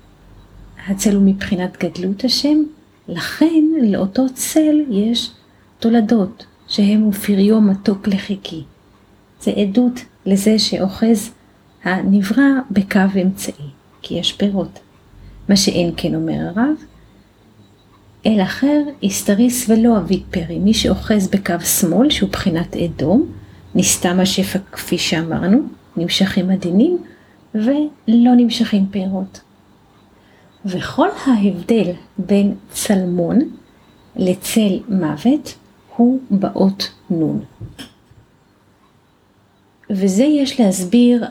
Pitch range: 165-230 Hz